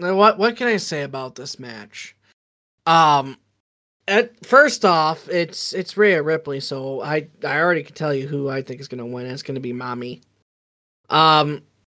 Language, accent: English, American